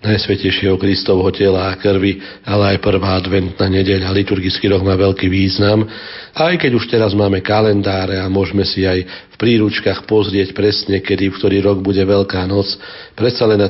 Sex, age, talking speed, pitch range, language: male, 40-59, 165 wpm, 100-110 Hz, Slovak